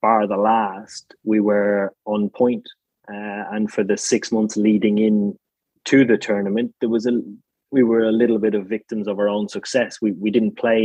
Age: 20-39